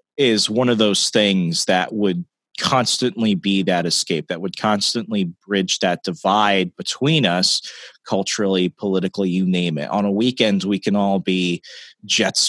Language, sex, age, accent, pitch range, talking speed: English, male, 30-49, American, 95-120 Hz, 155 wpm